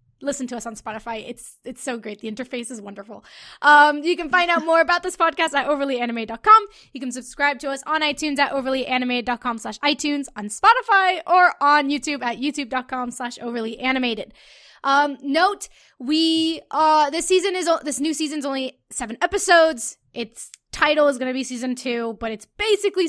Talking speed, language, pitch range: 165 wpm, English, 245-325 Hz